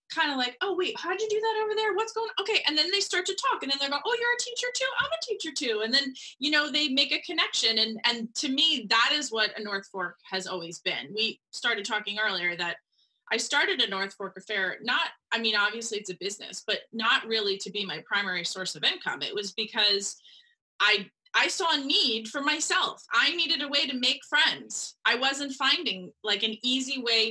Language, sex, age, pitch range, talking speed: English, female, 20-39, 215-300 Hz, 235 wpm